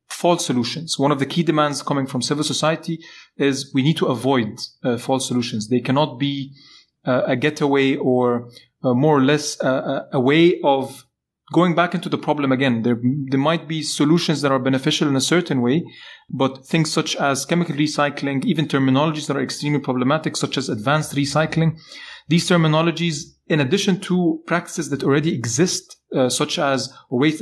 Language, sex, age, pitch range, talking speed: English, male, 30-49, 135-165 Hz, 180 wpm